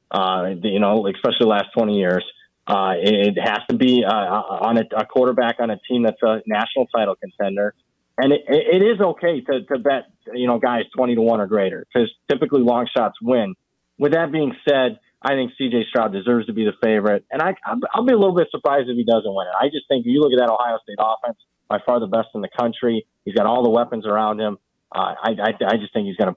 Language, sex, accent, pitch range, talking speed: English, male, American, 115-140 Hz, 245 wpm